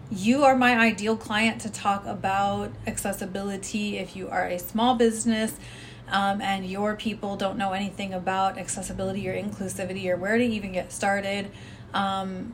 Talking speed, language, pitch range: 160 wpm, English, 190-220 Hz